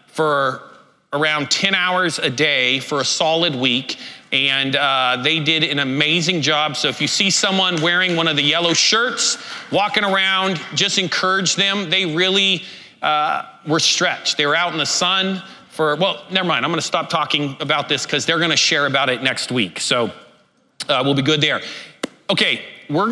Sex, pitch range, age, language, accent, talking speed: male, 150-190 Hz, 40-59, English, American, 185 wpm